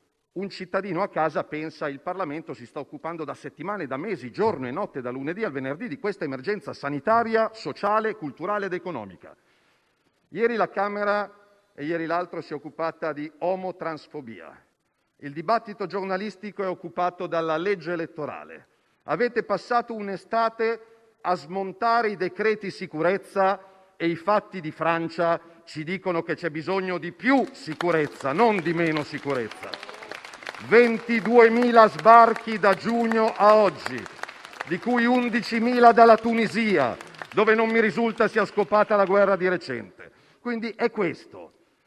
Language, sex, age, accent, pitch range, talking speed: Italian, male, 50-69, native, 165-220 Hz, 140 wpm